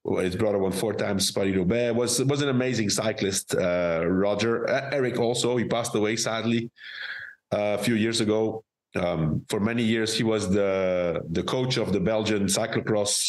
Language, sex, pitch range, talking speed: English, male, 100-125 Hz, 165 wpm